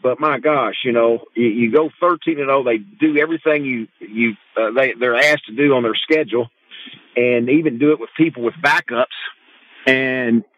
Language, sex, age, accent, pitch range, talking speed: English, male, 50-69, American, 120-165 Hz, 185 wpm